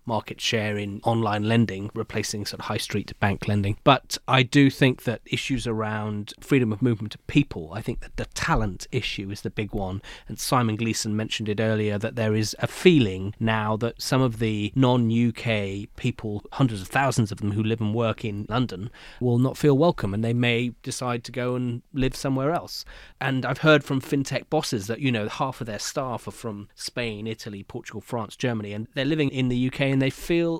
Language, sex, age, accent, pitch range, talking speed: English, male, 30-49, British, 110-135 Hz, 210 wpm